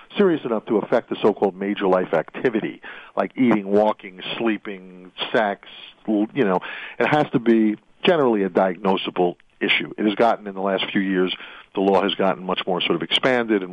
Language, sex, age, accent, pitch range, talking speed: English, male, 50-69, American, 95-135 Hz, 185 wpm